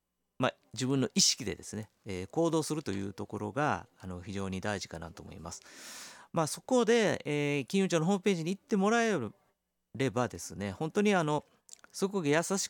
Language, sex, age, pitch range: Japanese, male, 40-59, 100-155 Hz